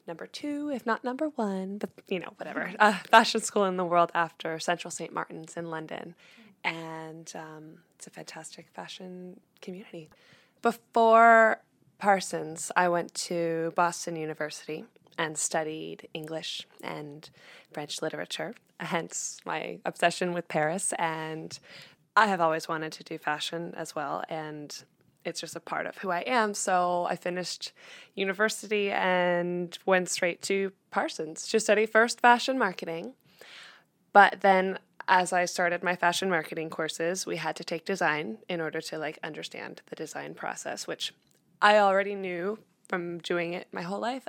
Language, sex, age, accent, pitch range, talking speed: English, female, 20-39, American, 165-200 Hz, 150 wpm